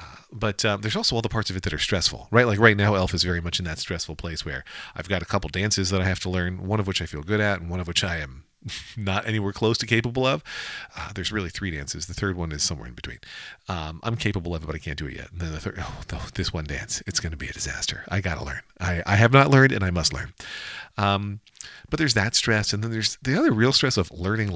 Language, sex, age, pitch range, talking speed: English, male, 40-59, 85-110 Hz, 290 wpm